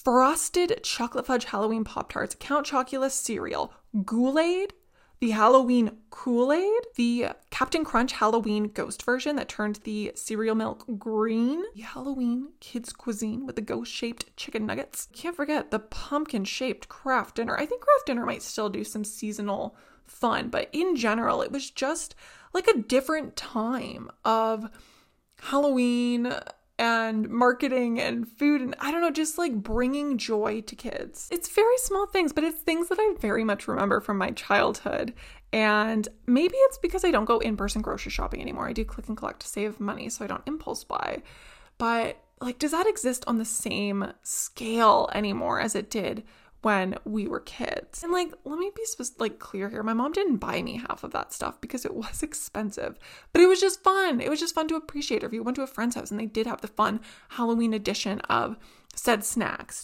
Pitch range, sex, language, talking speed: 220-295 Hz, female, English, 185 wpm